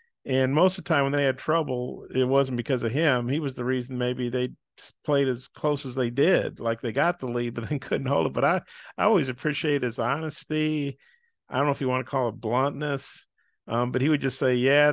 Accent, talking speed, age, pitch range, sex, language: American, 240 wpm, 50-69, 125-140 Hz, male, English